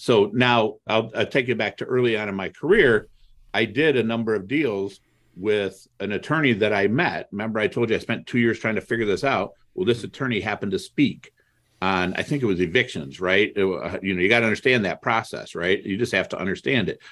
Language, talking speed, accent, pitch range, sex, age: English, 230 wpm, American, 95-120 Hz, male, 50-69